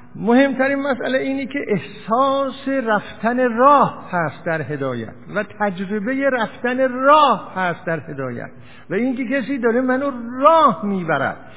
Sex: male